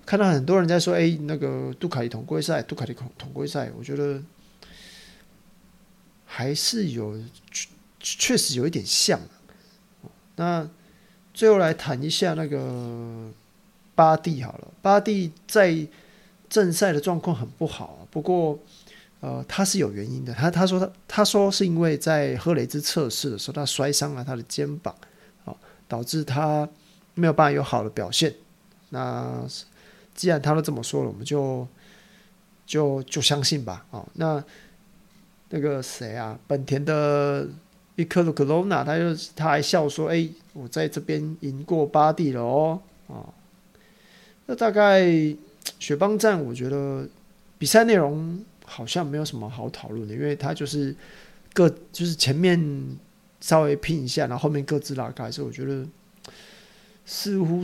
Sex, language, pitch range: male, Chinese, 140-185 Hz